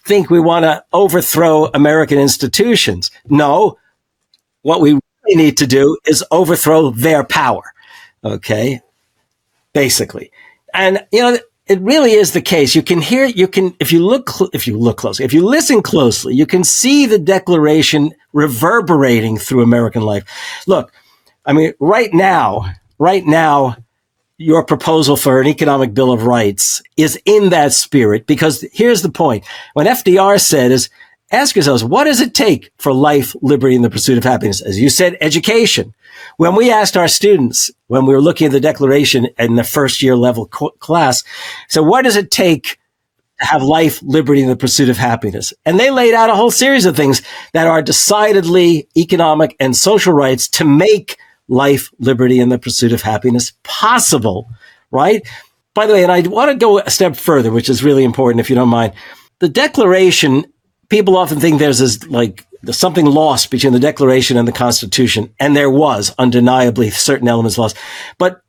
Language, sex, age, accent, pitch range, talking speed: English, male, 50-69, American, 125-185 Hz, 175 wpm